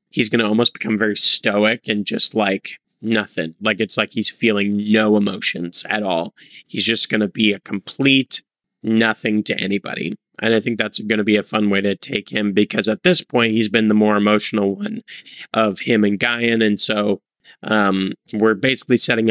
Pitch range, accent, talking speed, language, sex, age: 105-120 Hz, American, 195 wpm, English, male, 30-49